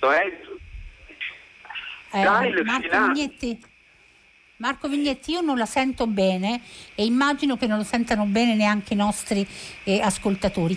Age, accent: 50-69, native